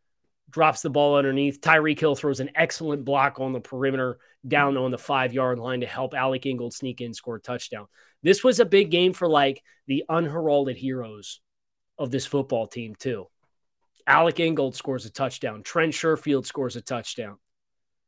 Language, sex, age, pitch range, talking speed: English, male, 20-39, 125-145 Hz, 175 wpm